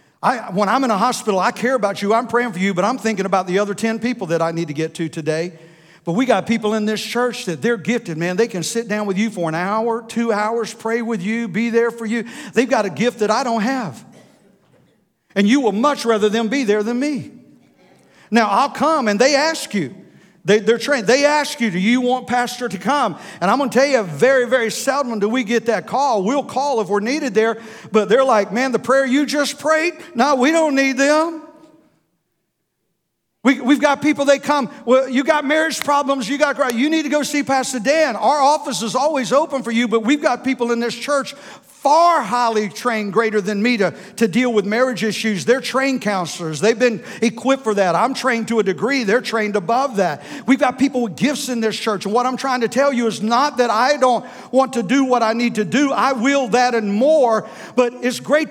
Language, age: English, 50-69